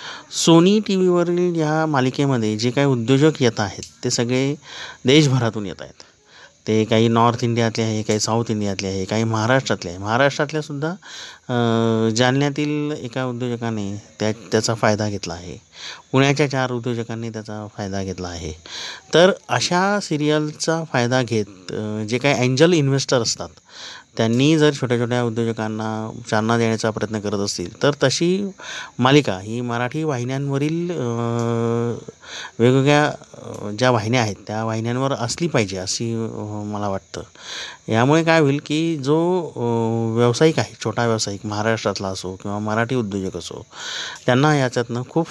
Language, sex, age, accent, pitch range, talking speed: Marathi, male, 30-49, native, 110-145 Hz, 100 wpm